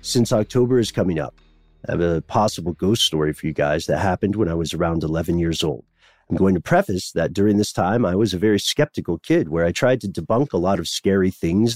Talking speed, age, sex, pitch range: 240 wpm, 40-59, male, 85-110 Hz